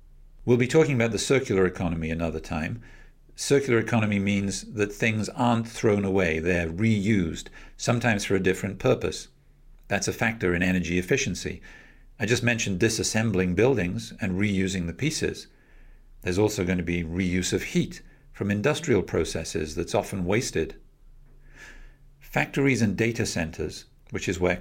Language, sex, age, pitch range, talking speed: English, male, 50-69, 90-120 Hz, 145 wpm